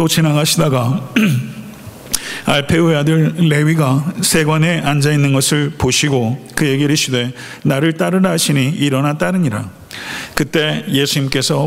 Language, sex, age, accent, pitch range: Korean, male, 50-69, native, 130-165 Hz